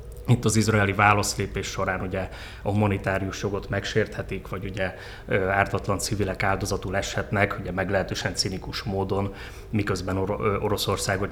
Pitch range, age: 95-105 Hz, 30-49